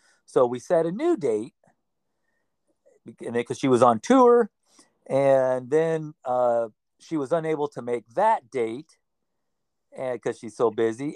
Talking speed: 135 wpm